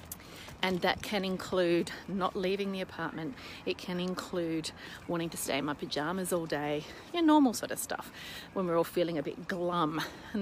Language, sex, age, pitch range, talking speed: English, female, 40-59, 175-210 Hz, 190 wpm